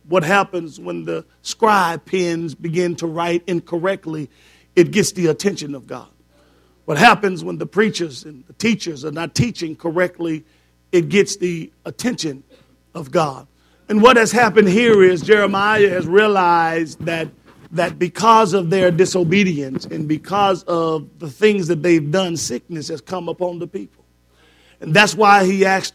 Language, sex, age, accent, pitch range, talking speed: English, male, 50-69, American, 160-200 Hz, 155 wpm